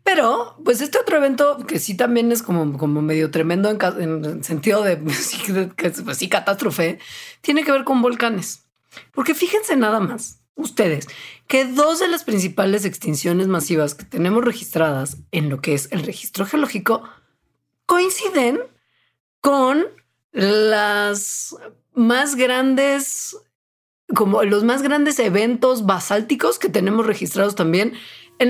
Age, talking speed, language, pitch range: 40-59, 130 wpm, Spanish, 175-270 Hz